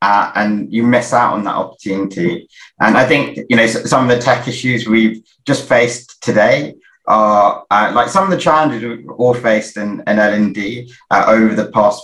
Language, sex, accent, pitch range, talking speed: English, male, British, 110-130 Hz, 200 wpm